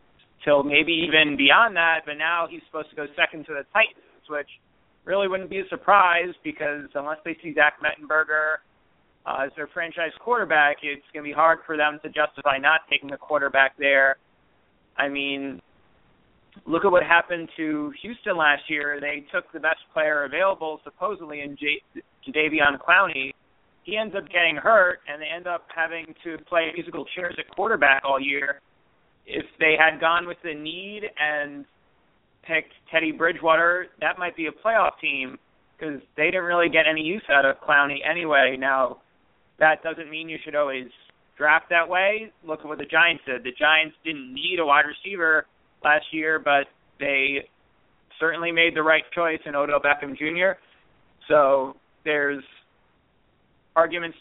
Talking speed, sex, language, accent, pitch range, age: 165 wpm, male, English, American, 145-165 Hz, 40-59